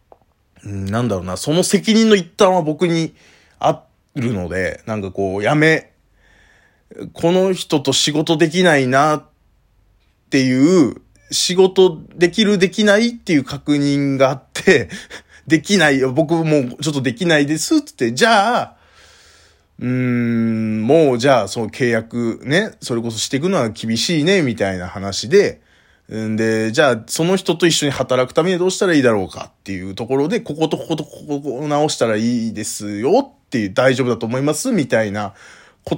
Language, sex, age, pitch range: Japanese, male, 20-39, 115-175 Hz